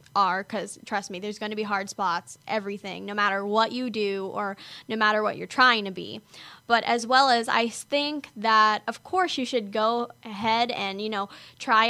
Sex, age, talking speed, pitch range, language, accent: female, 10-29, 205 wpm, 215-245 Hz, English, American